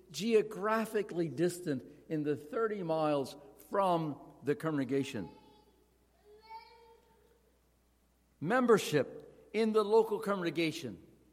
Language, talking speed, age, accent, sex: English, 75 wpm, 60-79, American, male